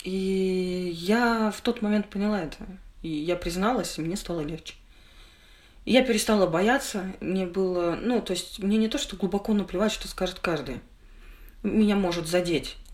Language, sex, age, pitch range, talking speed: Russian, female, 20-39, 165-215 Hz, 160 wpm